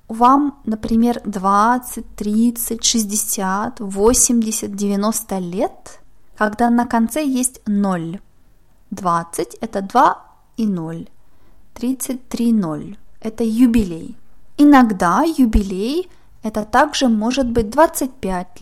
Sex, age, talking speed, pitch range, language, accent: female, 20-39, 95 wpm, 205-255 Hz, Russian, native